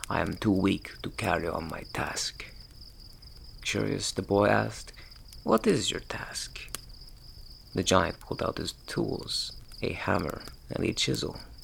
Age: 30-49